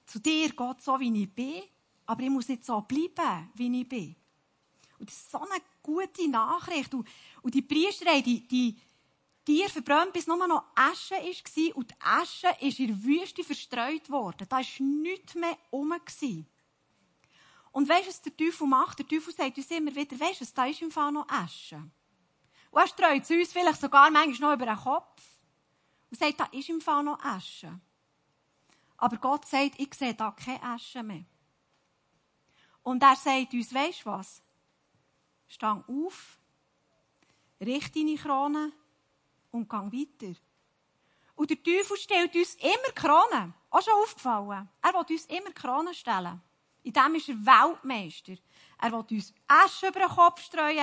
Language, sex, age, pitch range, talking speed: German, female, 40-59, 235-325 Hz, 170 wpm